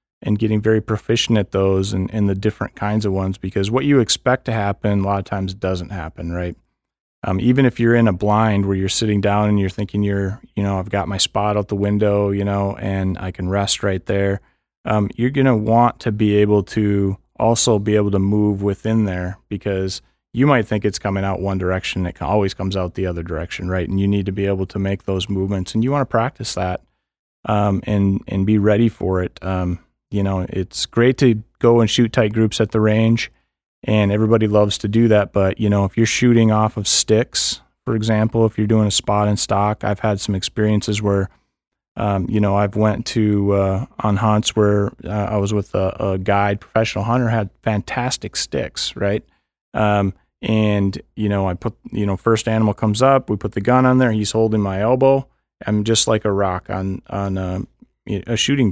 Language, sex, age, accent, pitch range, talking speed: English, male, 30-49, American, 95-110 Hz, 215 wpm